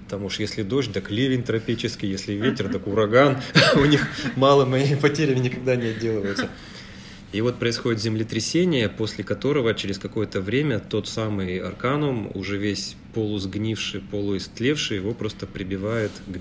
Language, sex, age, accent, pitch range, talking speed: Russian, male, 30-49, native, 100-115 Hz, 145 wpm